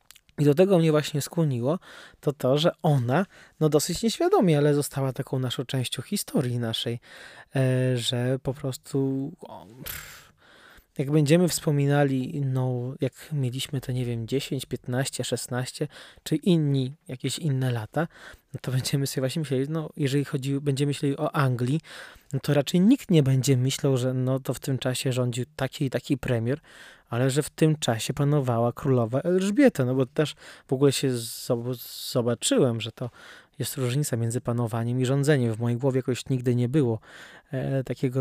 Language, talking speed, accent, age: Polish, 160 wpm, native, 20-39